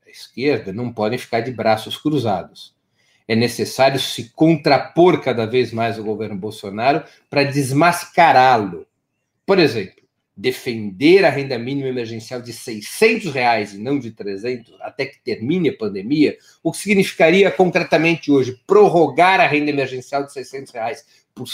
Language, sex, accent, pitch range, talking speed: Portuguese, male, Brazilian, 130-200 Hz, 140 wpm